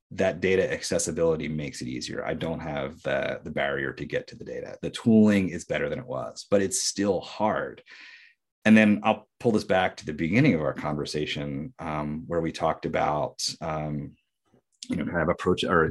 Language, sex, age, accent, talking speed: English, male, 30-49, American, 195 wpm